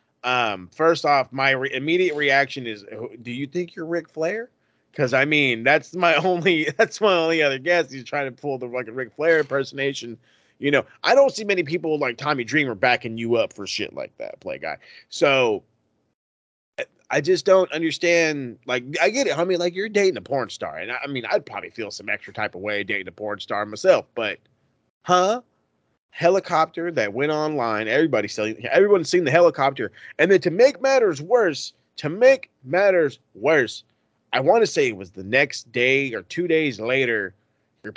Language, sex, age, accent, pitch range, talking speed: English, male, 30-49, American, 120-175 Hz, 195 wpm